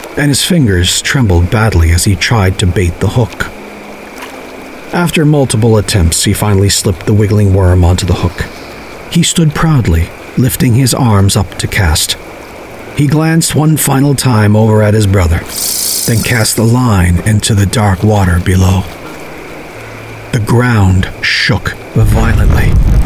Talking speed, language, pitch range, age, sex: 145 wpm, English, 95-120 Hz, 40-59, male